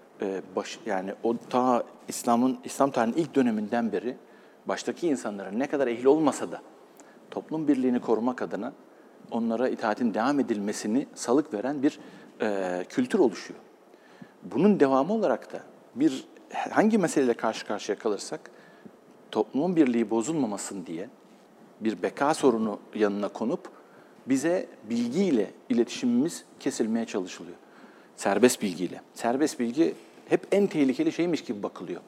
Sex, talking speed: male, 120 wpm